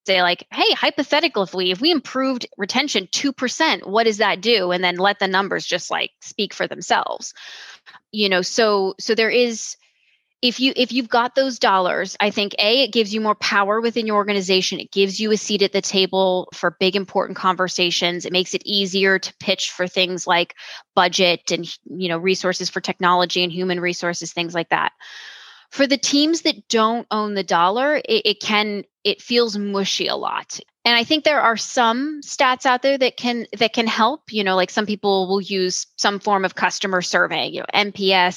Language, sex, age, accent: English, female, 10-29, American